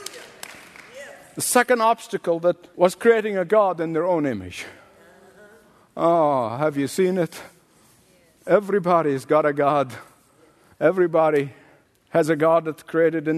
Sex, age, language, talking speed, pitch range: male, 50-69, English, 130 wpm, 175-250 Hz